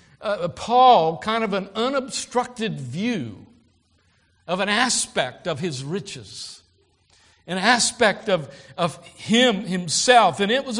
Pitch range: 145-230 Hz